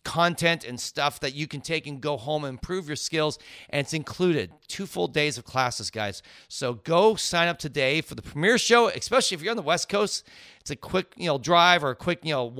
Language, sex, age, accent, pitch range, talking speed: English, male, 40-59, American, 140-185 Hz, 240 wpm